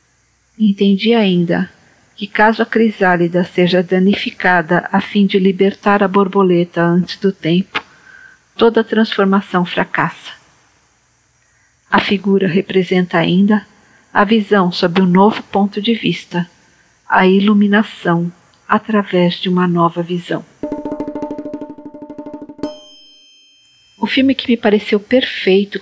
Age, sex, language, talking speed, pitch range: 50-69, female, Portuguese, 105 wpm, 180-220 Hz